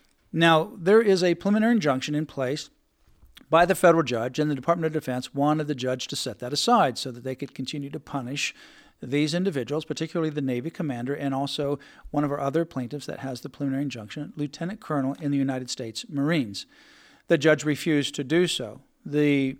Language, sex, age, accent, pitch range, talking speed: English, male, 50-69, American, 130-170 Hz, 195 wpm